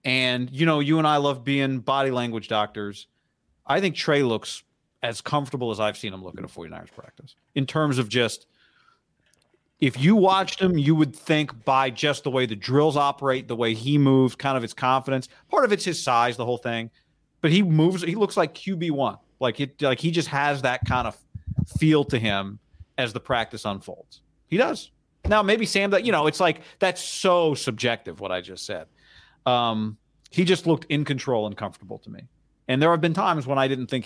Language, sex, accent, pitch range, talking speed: English, male, American, 120-155 Hz, 210 wpm